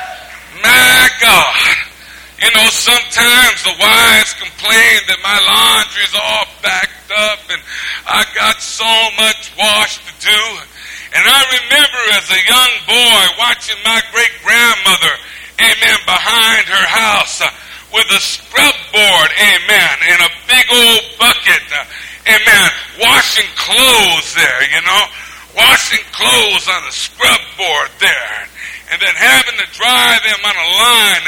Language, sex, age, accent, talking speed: English, male, 50-69, American, 135 wpm